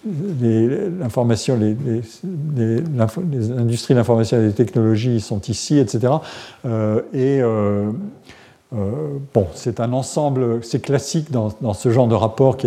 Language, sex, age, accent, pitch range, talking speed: French, male, 50-69, French, 115-135 Hz, 155 wpm